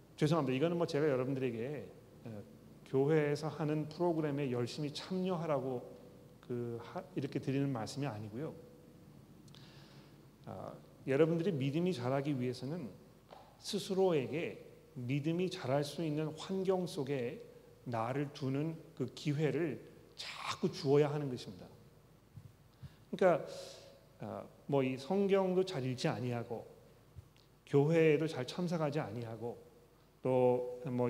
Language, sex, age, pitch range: Korean, male, 40-59, 130-160 Hz